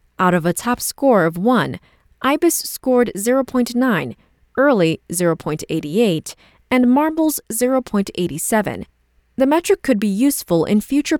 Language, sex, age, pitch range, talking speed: English, female, 20-39, 165-260 Hz, 120 wpm